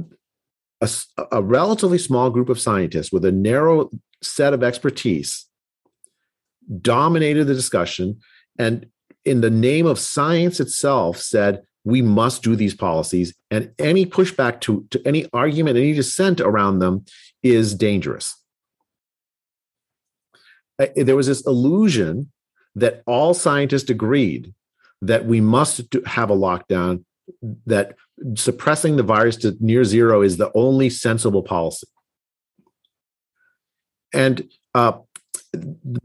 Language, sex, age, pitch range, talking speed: English, male, 50-69, 105-140 Hz, 120 wpm